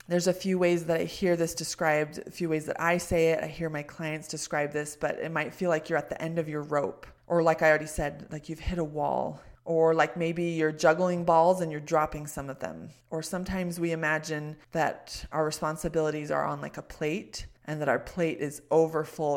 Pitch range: 150-175 Hz